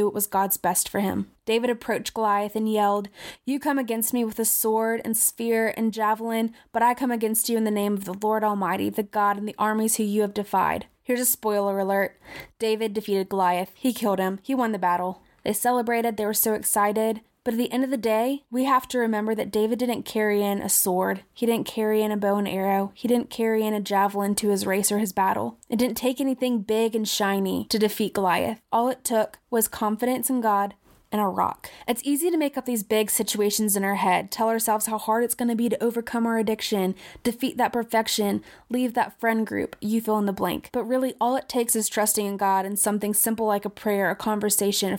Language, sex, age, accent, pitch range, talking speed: English, female, 20-39, American, 205-235 Hz, 230 wpm